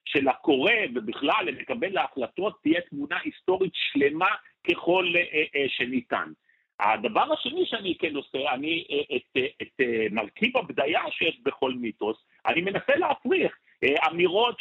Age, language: 50-69, Hebrew